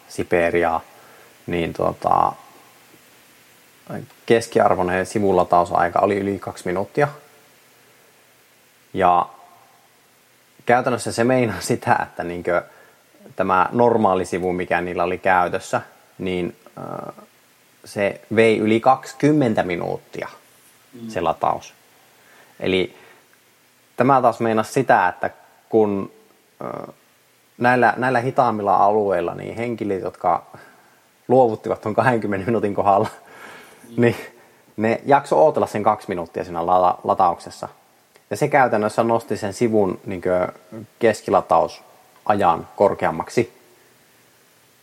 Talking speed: 95 wpm